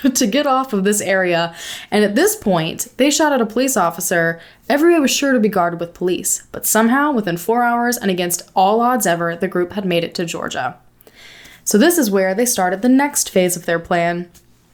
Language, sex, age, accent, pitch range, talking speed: English, female, 20-39, American, 180-230 Hz, 215 wpm